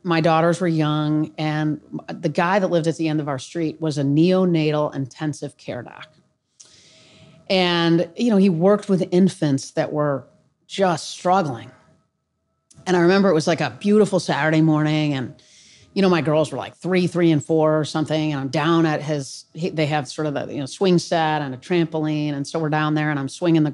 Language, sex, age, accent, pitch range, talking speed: English, female, 30-49, American, 150-185 Hz, 205 wpm